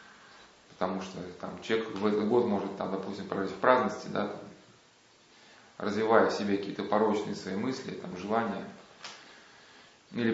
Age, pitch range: 30-49, 100-125 Hz